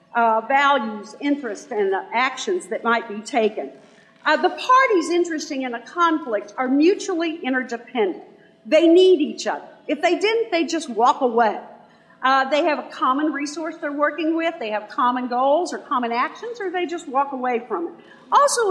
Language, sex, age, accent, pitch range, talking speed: English, female, 50-69, American, 230-330 Hz, 175 wpm